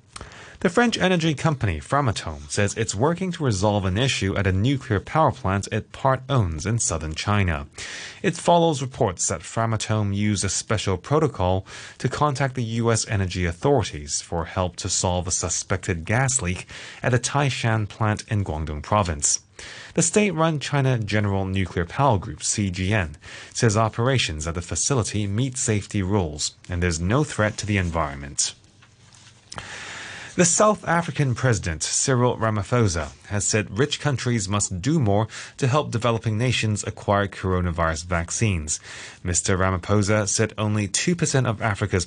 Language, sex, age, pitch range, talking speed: English, male, 30-49, 90-125 Hz, 145 wpm